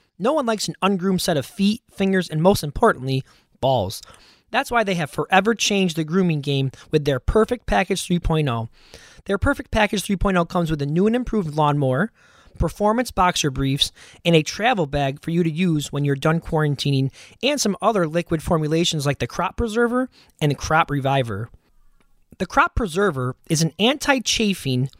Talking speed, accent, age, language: 175 wpm, American, 20-39, English